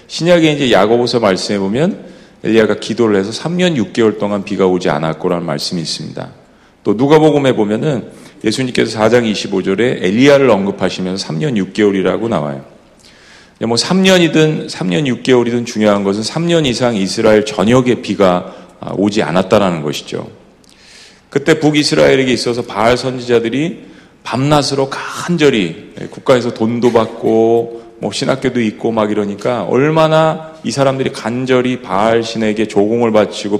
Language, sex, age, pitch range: Korean, male, 40-59, 105-135 Hz